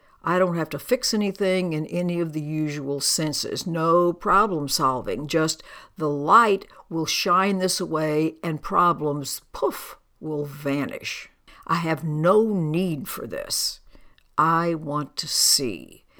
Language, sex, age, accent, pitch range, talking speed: English, female, 60-79, American, 150-175 Hz, 135 wpm